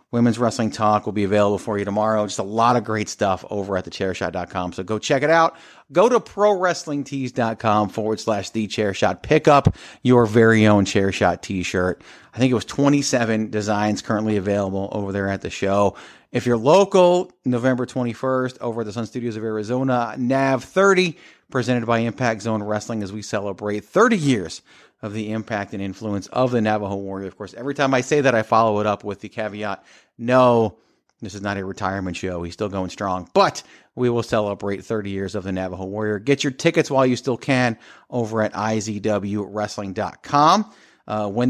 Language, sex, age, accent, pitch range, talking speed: English, male, 40-59, American, 100-125 Hz, 185 wpm